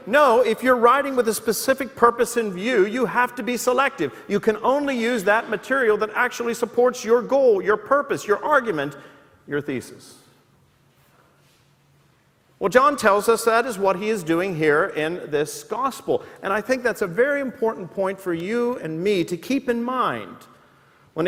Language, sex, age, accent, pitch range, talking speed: English, male, 50-69, American, 185-245 Hz, 180 wpm